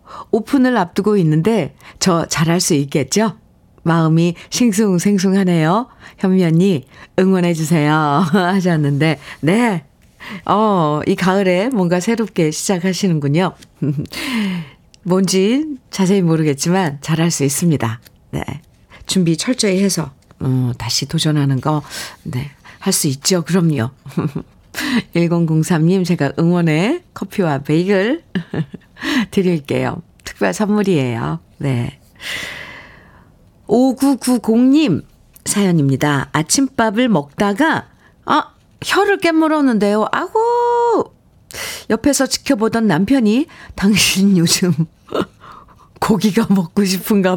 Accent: native